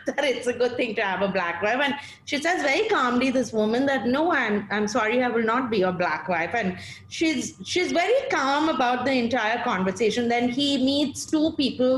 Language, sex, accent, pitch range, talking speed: English, female, Indian, 215-275 Hz, 215 wpm